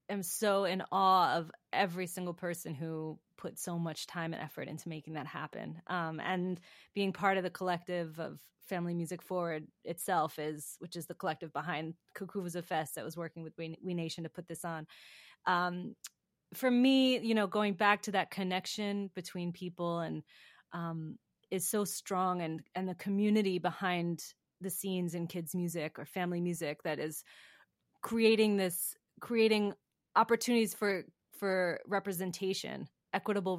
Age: 20-39